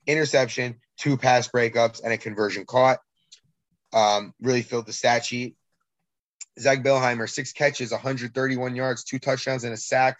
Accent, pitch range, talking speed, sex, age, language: American, 110-130 Hz, 145 wpm, male, 20-39, English